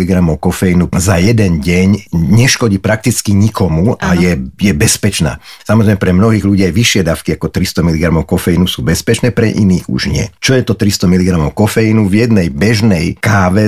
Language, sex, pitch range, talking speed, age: Slovak, male, 85-105 Hz, 165 wpm, 50-69